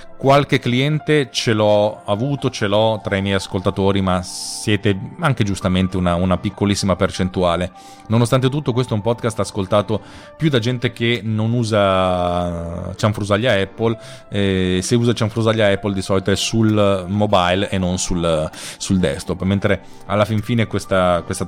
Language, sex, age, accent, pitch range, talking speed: Italian, male, 30-49, native, 95-125 Hz, 155 wpm